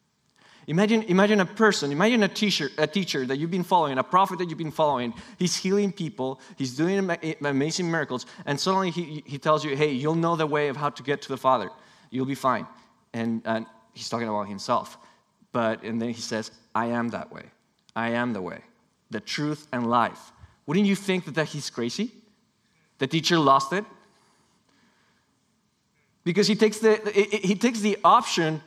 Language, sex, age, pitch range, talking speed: English, male, 20-39, 130-190 Hz, 185 wpm